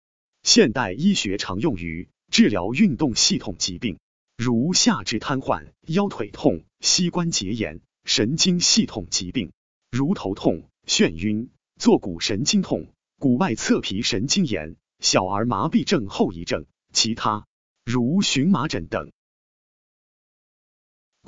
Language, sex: Chinese, male